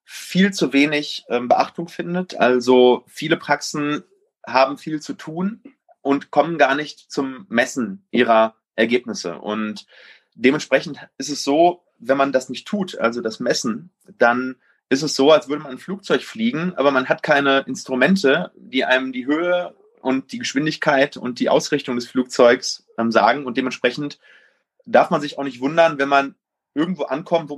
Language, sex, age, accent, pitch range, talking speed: German, male, 30-49, German, 130-175 Hz, 160 wpm